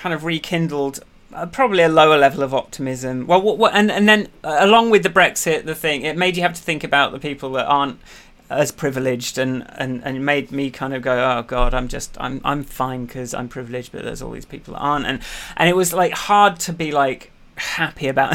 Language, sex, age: English, male, 30-49